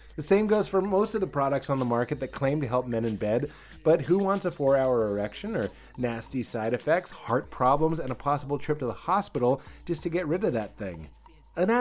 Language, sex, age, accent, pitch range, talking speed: English, male, 30-49, American, 120-190 Hz, 235 wpm